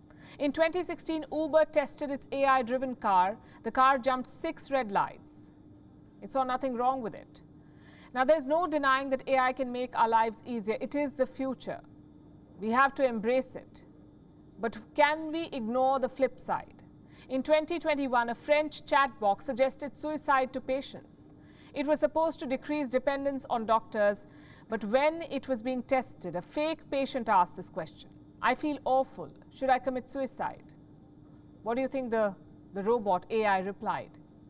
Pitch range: 225-275 Hz